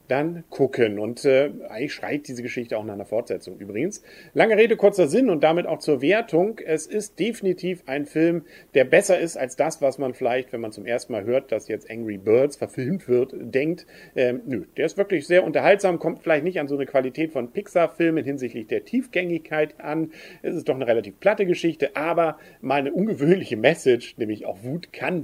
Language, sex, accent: German, male, German